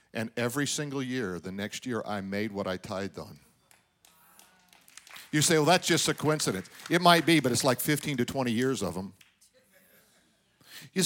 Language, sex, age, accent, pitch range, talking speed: English, male, 50-69, American, 115-160 Hz, 180 wpm